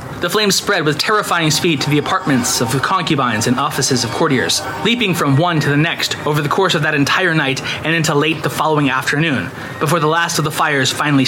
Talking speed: 225 wpm